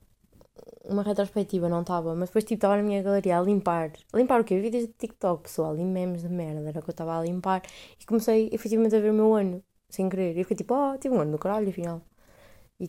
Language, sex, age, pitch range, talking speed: Portuguese, female, 20-39, 170-230 Hz, 250 wpm